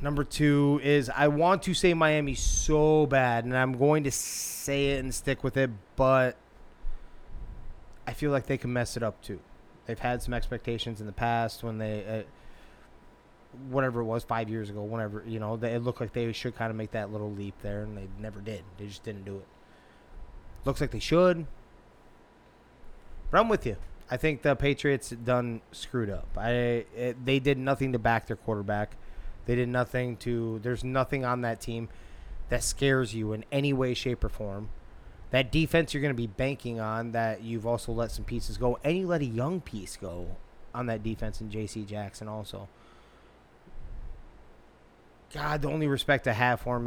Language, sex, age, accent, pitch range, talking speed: English, male, 20-39, American, 110-130 Hz, 190 wpm